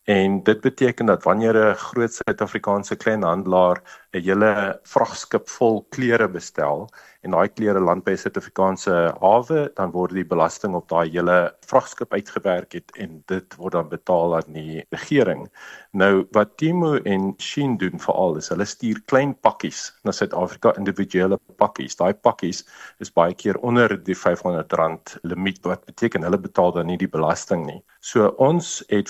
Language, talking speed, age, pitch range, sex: English, 160 wpm, 50-69, 90-115 Hz, male